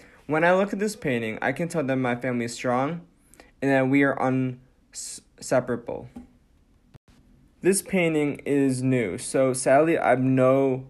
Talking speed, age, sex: 155 wpm, 20-39, male